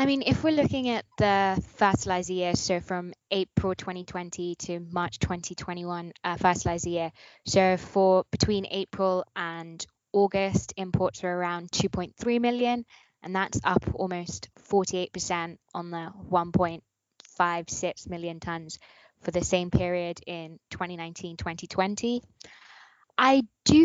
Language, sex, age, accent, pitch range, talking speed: English, female, 10-29, British, 175-205 Hz, 120 wpm